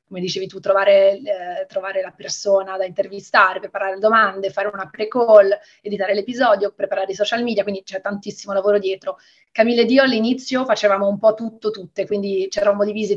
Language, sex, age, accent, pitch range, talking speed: Italian, female, 30-49, native, 195-220 Hz, 175 wpm